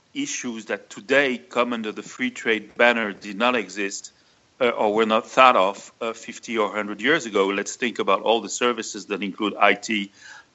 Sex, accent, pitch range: male, French, 100-120 Hz